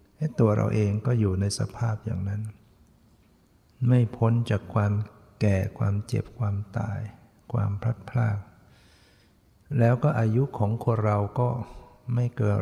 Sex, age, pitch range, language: male, 60-79, 100-115 Hz, Thai